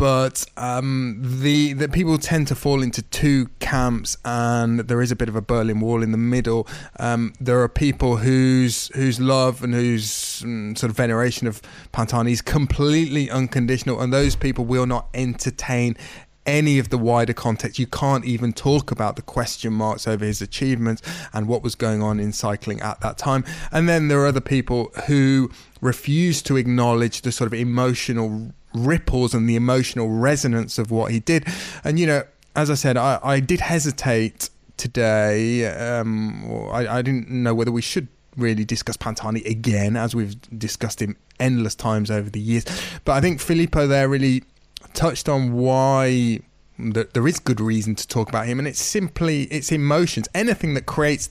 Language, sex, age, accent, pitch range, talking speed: English, male, 20-39, British, 115-135 Hz, 180 wpm